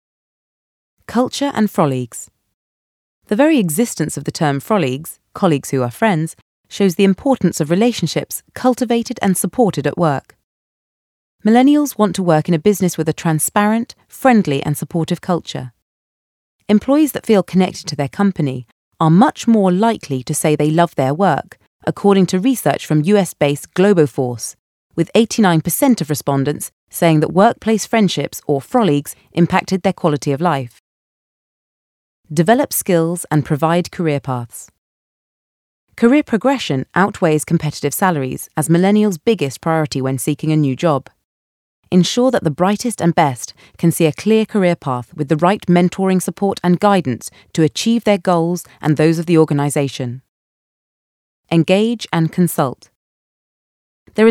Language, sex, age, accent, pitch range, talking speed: English, female, 30-49, British, 145-200 Hz, 140 wpm